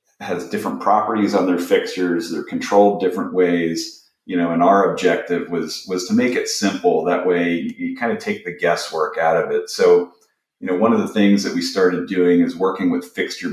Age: 40-59